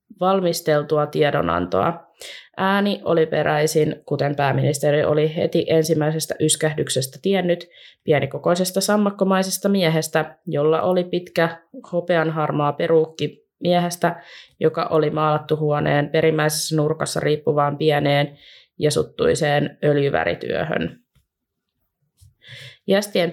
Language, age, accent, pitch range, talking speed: Finnish, 20-39, native, 150-170 Hz, 85 wpm